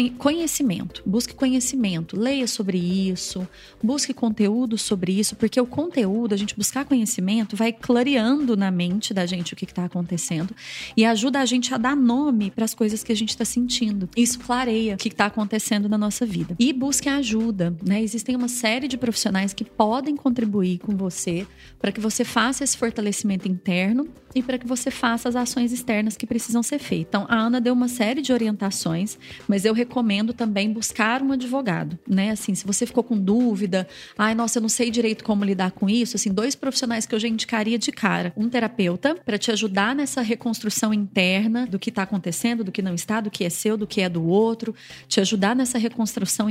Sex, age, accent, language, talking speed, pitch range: female, 30-49, Brazilian, Portuguese, 200 wpm, 200-245 Hz